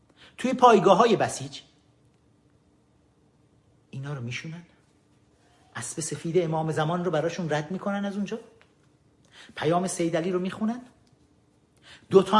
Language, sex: Persian, male